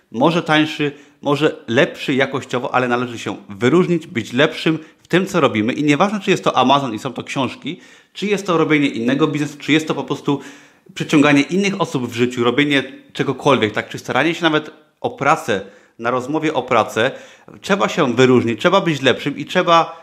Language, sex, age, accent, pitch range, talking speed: Polish, male, 30-49, native, 125-165 Hz, 185 wpm